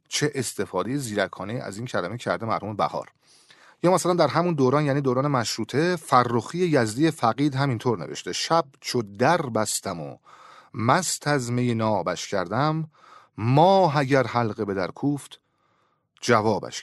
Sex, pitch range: male, 110-160 Hz